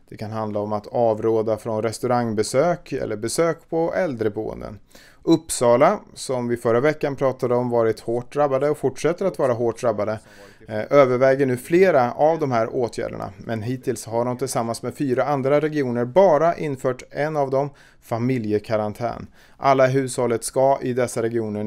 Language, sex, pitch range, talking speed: Swedish, male, 115-140 Hz, 155 wpm